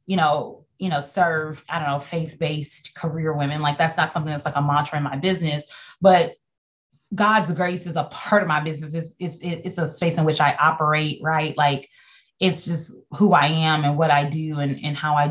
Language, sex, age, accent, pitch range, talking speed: English, female, 20-39, American, 155-200 Hz, 215 wpm